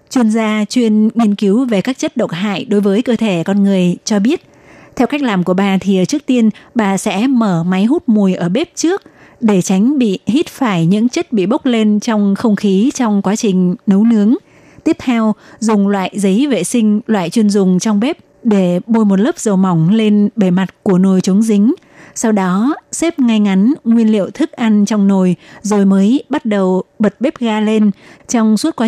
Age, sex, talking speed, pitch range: 20-39, female, 210 wpm, 195-235 Hz